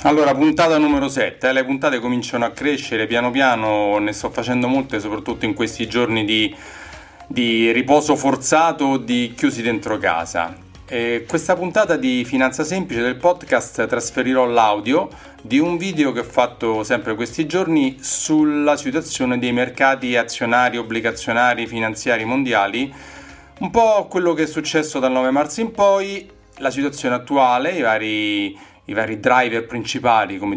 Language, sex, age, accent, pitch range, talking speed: Italian, male, 40-59, native, 110-145 Hz, 150 wpm